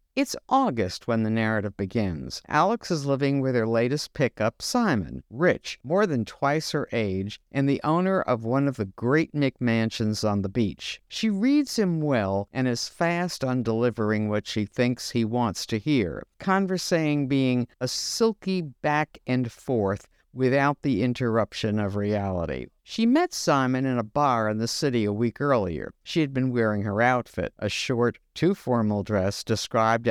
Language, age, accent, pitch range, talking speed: English, 60-79, American, 105-145 Hz, 170 wpm